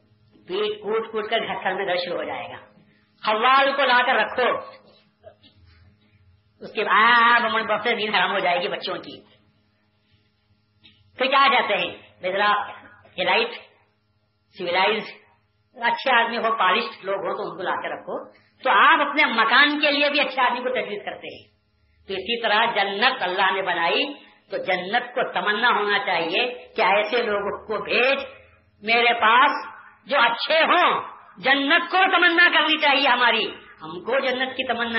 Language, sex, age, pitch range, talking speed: Urdu, female, 50-69, 155-245 Hz, 155 wpm